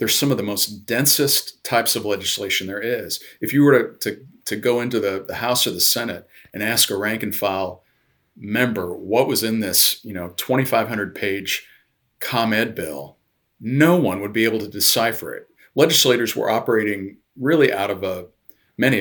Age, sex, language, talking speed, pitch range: 40-59, male, English, 185 wpm, 100-125 Hz